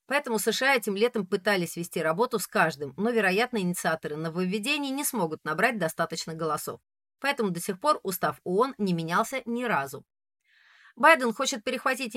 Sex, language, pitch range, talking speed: female, Russian, 170-235 Hz, 155 wpm